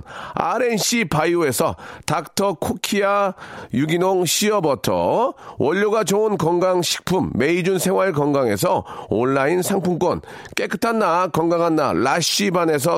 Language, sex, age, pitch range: Korean, male, 40-59, 165-210 Hz